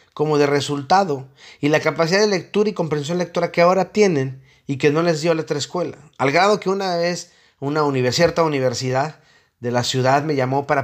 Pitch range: 135-185 Hz